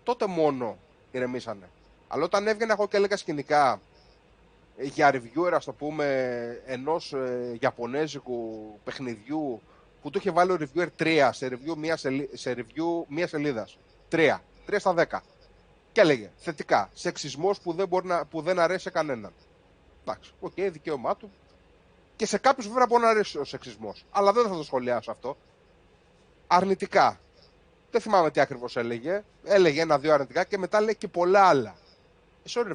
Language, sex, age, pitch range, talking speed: Greek, male, 30-49, 130-200 Hz, 160 wpm